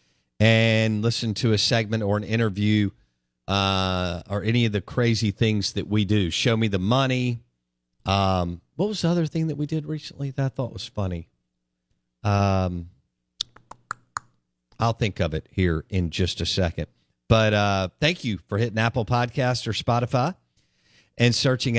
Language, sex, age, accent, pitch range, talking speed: English, male, 50-69, American, 90-125 Hz, 160 wpm